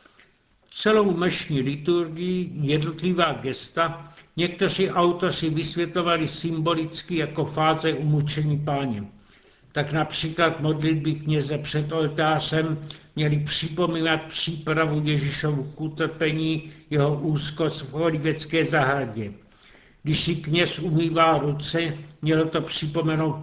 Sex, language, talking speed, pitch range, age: male, Czech, 95 wpm, 145-165 Hz, 60-79